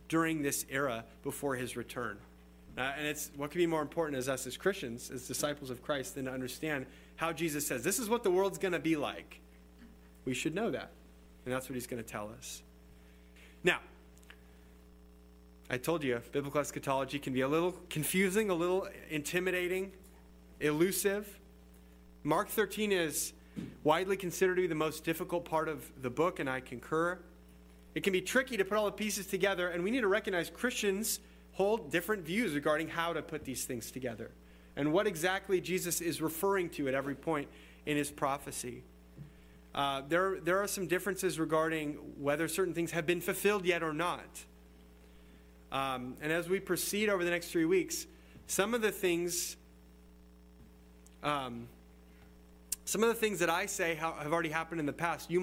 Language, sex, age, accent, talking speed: English, male, 30-49, American, 175 wpm